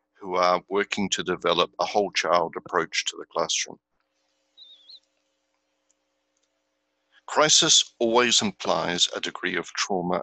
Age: 60-79